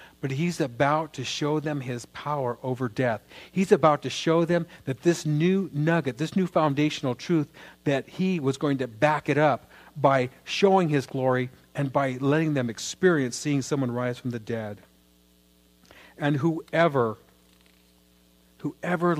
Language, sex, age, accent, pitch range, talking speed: English, male, 50-69, American, 120-160 Hz, 155 wpm